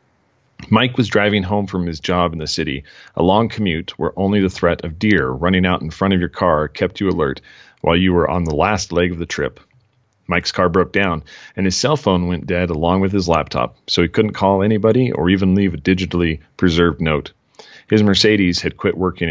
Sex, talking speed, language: male, 220 wpm, English